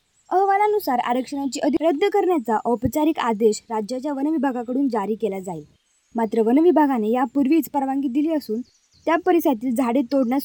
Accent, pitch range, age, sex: native, 245-315 Hz, 20-39, female